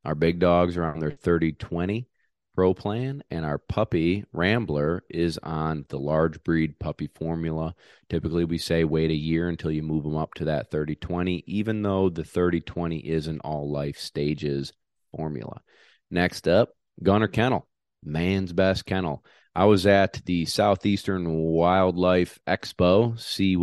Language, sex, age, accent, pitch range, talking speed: English, male, 30-49, American, 80-95 Hz, 150 wpm